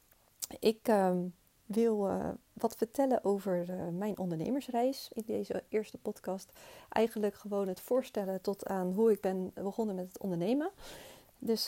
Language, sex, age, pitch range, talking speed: Dutch, female, 30-49, 180-220 Hz, 145 wpm